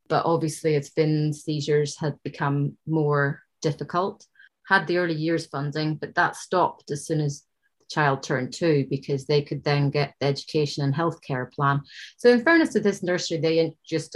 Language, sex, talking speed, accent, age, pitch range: English, female, 180 wpm, British, 30-49, 145-165 Hz